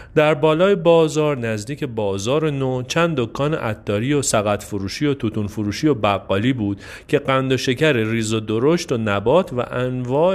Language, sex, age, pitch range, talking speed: Persian, male, 40-59, 110-150 Hz, 170 wpm